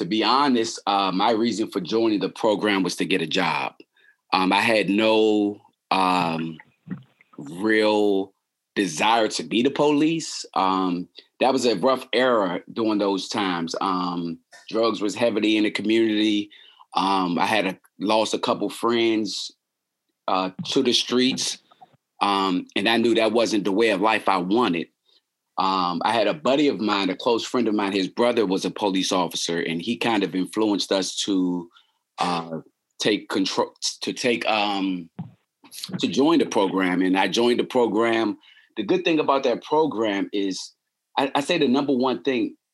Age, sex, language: 30-49, male, English